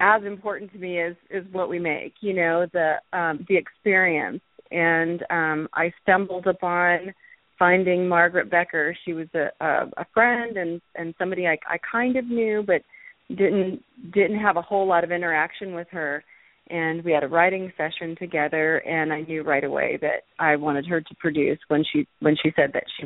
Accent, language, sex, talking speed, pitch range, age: American, English, female, 190 wpm, 165-190 Hz, 30-49